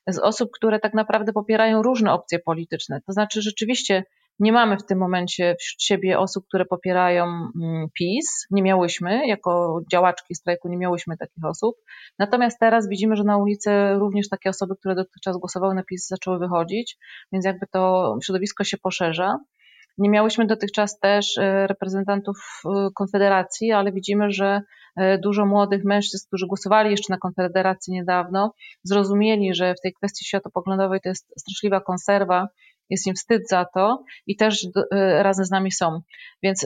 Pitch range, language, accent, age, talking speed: 185-215 Hz, Polish, native, 30-49, 155 wpm